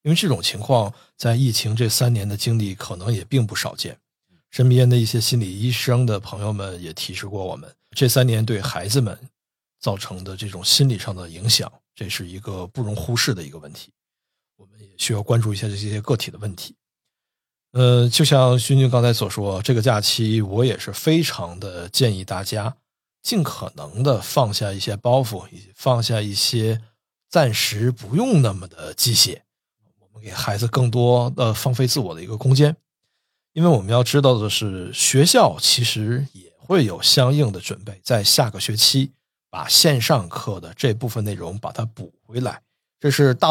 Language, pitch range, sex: Chinese, 105-130 Hz, male